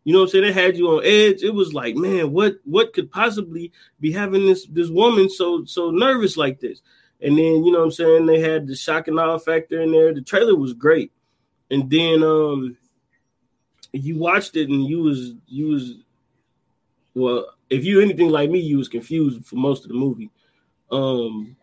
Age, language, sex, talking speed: 20-39, English, male, 205 wpm